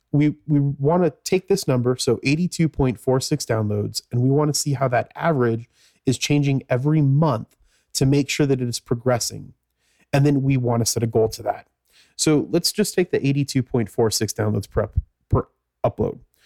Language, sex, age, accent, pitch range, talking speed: English, male, 30-49, American, 115-150 Hz, 180 wpm